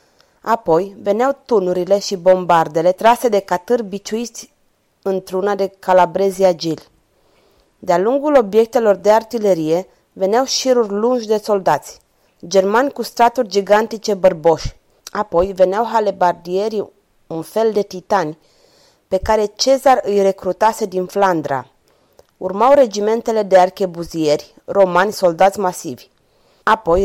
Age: 30-49